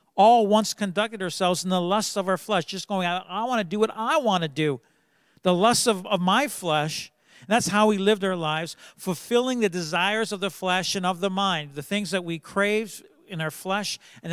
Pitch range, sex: 165-210 Hz, male